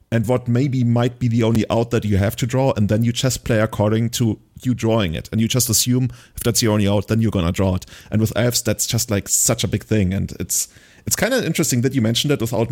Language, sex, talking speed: English, male, 275 wpm